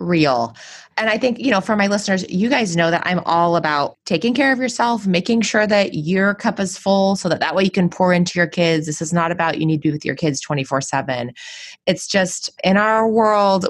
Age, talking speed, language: 20-39, 240 wpm, English